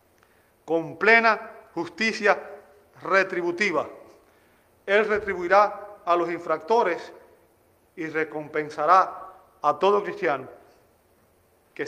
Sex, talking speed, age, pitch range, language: male, 75 wpm, 40-59, 155-215 Hz, Spanish